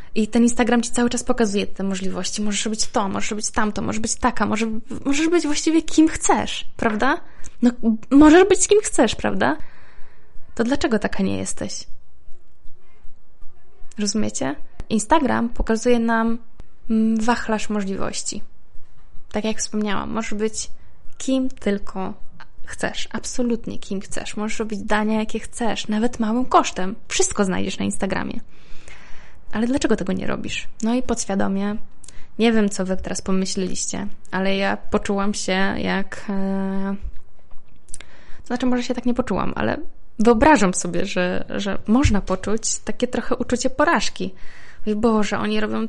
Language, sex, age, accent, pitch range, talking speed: Polish, female, 20-39, native, 200-245 Hz, 135 wpm